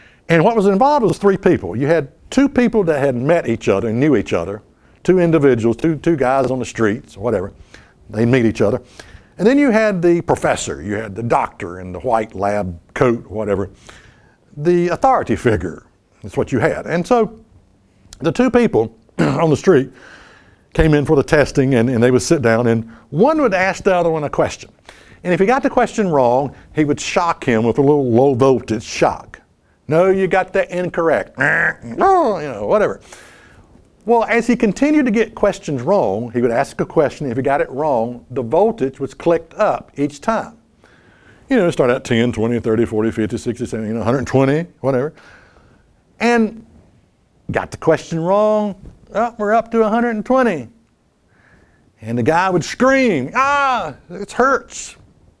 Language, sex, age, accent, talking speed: English, male, 60-79, American, 180 wpm